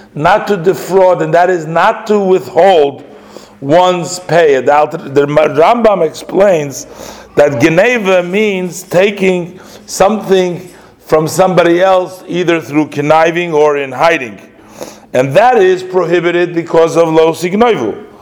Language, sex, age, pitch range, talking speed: English, male, 50-69, 150-185 Hz, 120 wpm